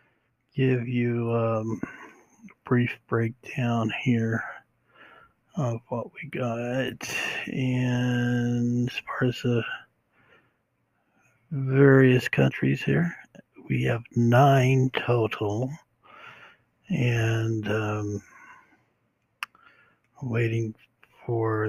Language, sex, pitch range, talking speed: English, male, 110-125 Hz, 75 wpm